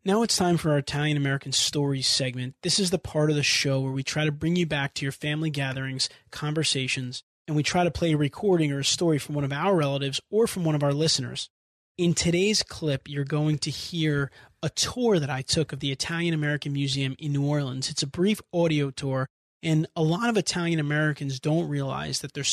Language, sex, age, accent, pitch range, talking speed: English, male, 20-39, American, 140-170 Hz, 225 wpm